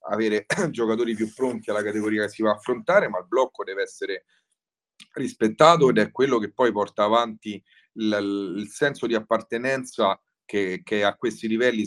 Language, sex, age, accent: Italian, male, 30-49, native